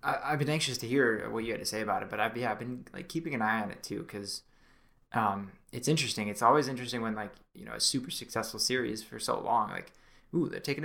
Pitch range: 115-150 Hz